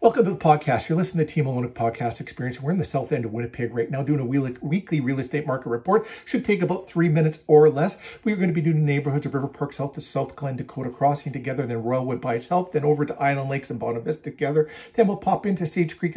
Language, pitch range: English, 130-160 Hz